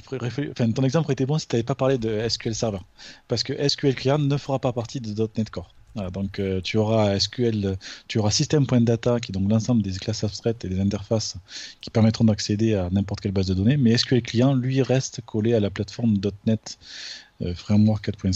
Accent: French